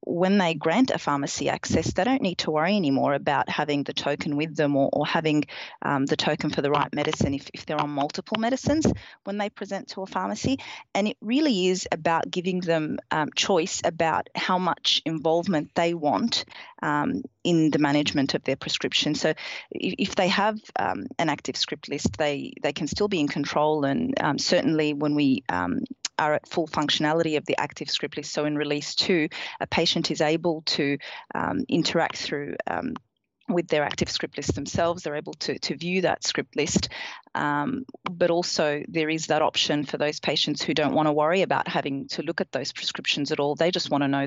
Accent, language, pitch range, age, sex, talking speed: Australian, English, 150-180 Hz, 30-49, female, 200 wpm